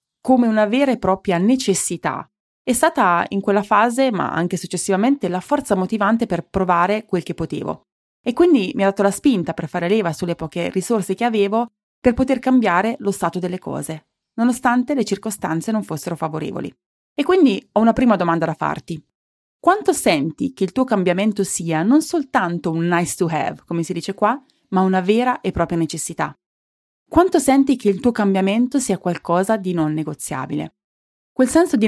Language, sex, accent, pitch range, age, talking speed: Italian, female, native, 170-230 Hz, 30-49, 180 wpm